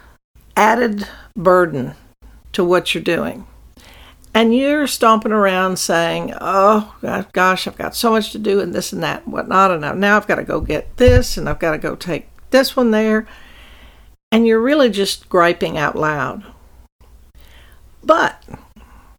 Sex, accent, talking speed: female, American, 155 wpm